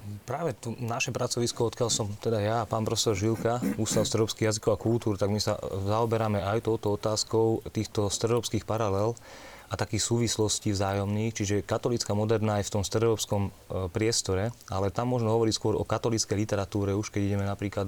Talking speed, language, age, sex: 170 wpm, Slovak, 30-49, male